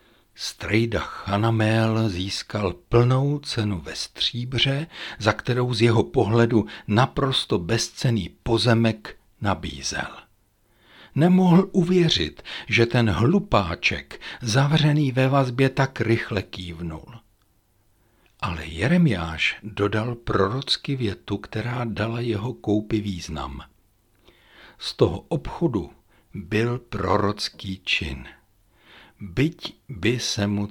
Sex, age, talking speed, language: male, 60-79, 90 wpm, Czech